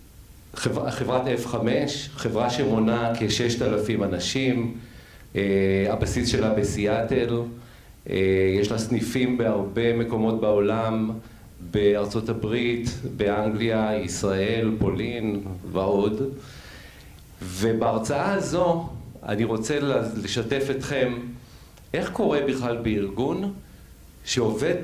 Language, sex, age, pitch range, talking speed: Hebrew, male, 40-59, 105-130 Hz, 80 wpm